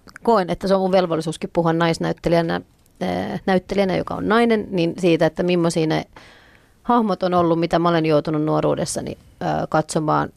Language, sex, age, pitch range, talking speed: Finnish, female, 30-49, 155-185 Hz, 145 wpm